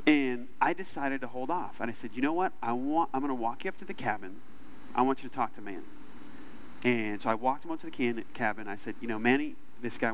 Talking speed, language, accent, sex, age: 280 wpm, English, American, male, 30-49